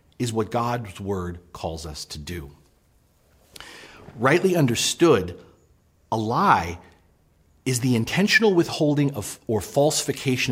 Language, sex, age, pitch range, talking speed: English, male, 40-59, 100-155 Hz, 110 wpm